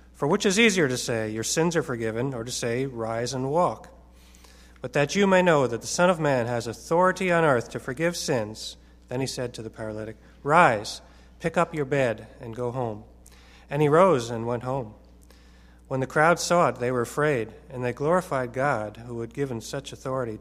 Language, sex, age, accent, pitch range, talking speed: English, male, 40-59, American, 105-135 Hz, 205 wpm